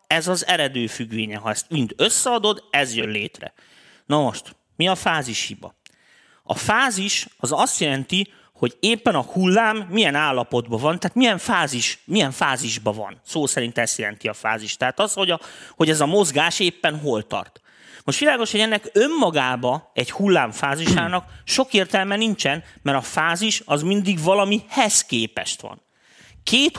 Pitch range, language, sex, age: 135-200 Hz, Hungarian, male, 30-49